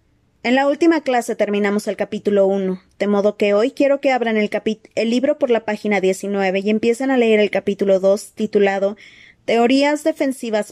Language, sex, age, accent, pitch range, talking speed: Spanish, female, 20-39, Mexican, 195-225 Hz, 185 wpm